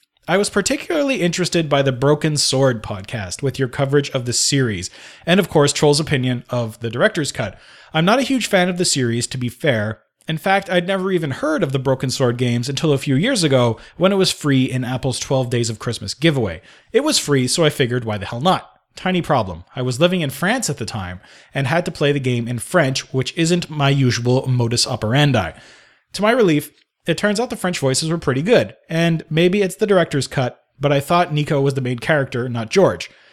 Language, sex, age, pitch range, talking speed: English, male, 30-49, 125-165 Hz, 225 wpm